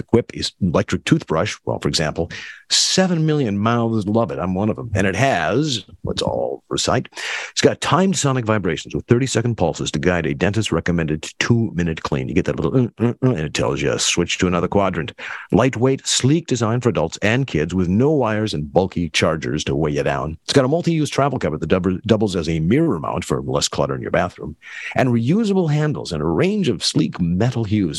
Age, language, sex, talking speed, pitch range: 50-69, English, male, 210 wpm, 95-140 Hz